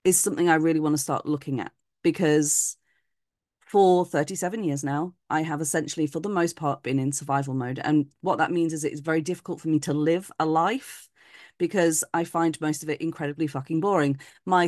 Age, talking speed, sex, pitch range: 30-49, 205 wpm, female, 145-175 Hz